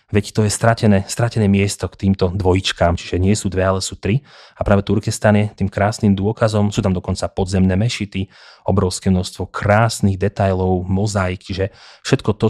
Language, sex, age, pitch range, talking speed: Slovak, male, 30-49, 95-110 Hz, 175 wpm